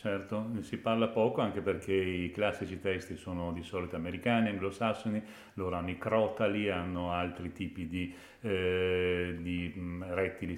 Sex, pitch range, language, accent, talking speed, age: male, 85-105 Hz, Italian, native, 140 wpm, 40-59